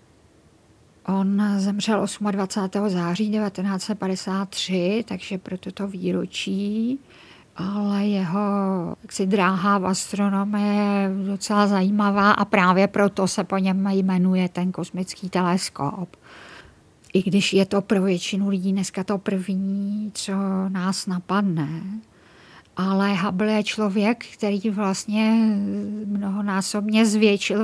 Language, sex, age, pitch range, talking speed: Czech, female, 50-69, 190-210 Hz, 110 wpm